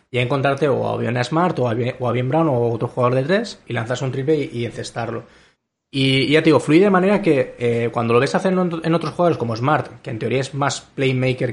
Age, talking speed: 20-39, 255 wpm